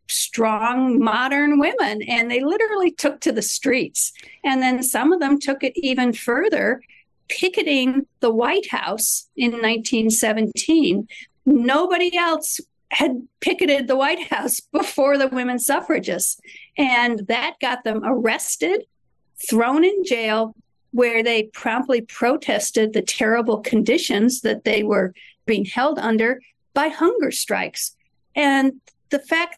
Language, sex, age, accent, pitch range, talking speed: English, female, 50-69, American, 230-290 Hz, 130 wpm